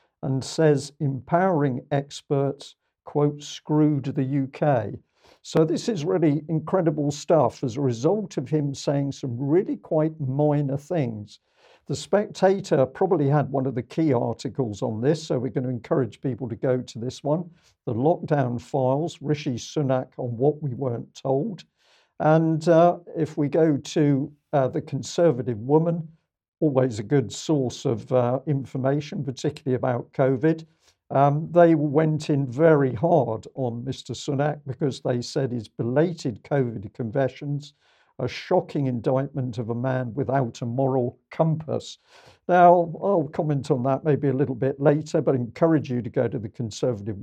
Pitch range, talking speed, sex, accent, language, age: 130-160 Hz, 155 wpm, male, British, English, 50-69